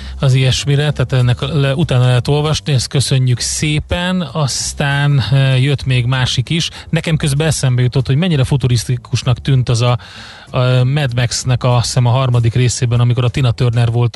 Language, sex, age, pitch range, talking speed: Hungarian, male, 30-49, 120-135 Hz, 165 wpm